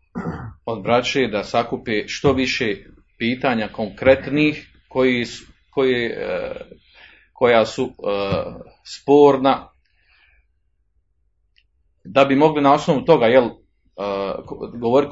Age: 40-59